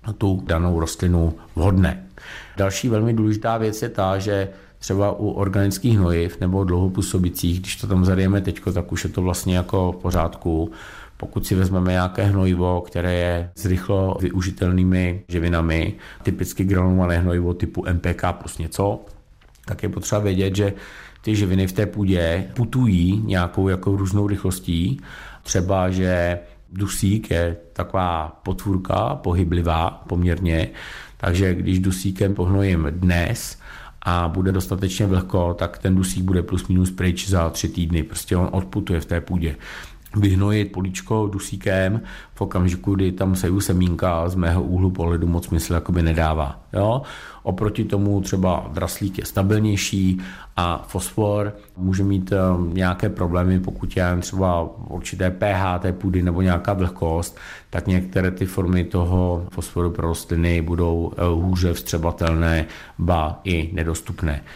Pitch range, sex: 85-100 Hz, male